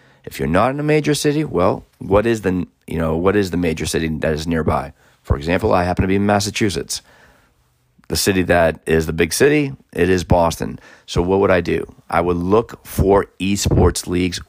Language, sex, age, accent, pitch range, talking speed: English, male, 30-49, American, 85-105 Hz, 205 wpm